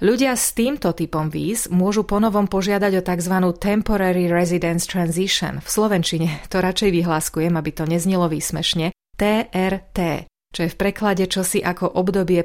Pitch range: 170-200 Hz